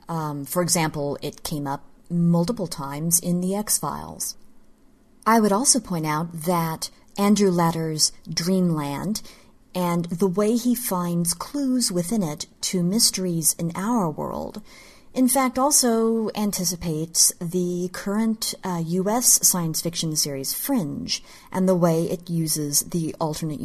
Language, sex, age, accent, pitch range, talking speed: English, female, 40-59, American, 165-210 Hz, 130 wpm